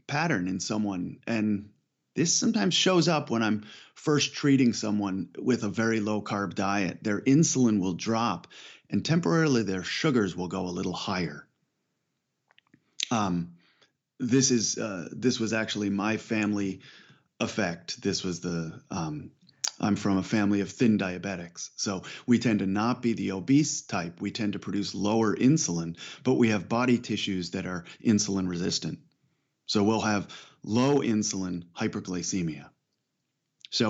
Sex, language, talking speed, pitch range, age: male, English, 150 wpm, 95-115 Hz, 30-49